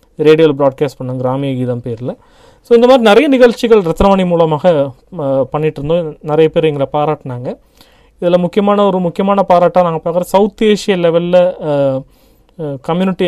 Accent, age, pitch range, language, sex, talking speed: native, 30-49, 145-180 Hz, Tamil, male, 130 wpm